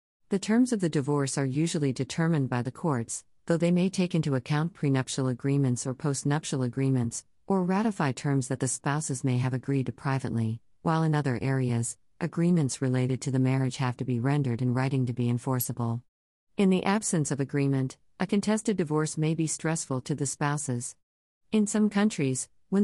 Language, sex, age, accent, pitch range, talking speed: English, female, 50-69, American, 130-160 Hz, 180 wpm